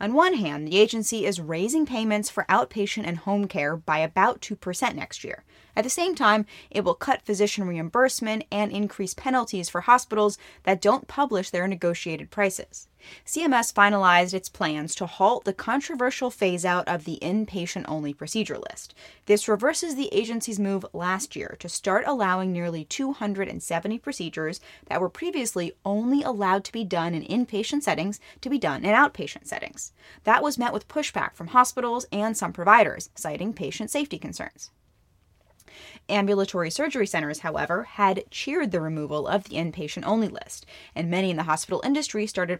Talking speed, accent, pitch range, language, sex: 160 wpm, American, 180-230 Hz, English, female